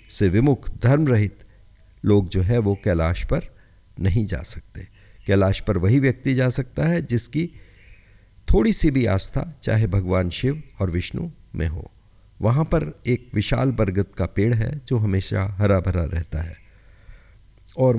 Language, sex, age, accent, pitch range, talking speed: Hindi, male, 50-69, native, 95-120 Hz, 155 wpm